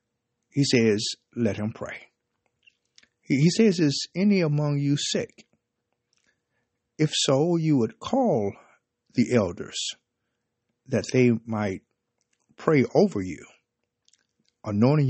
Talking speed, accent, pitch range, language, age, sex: 105 wpm, American, 115-145 Hz, English, 50-69, male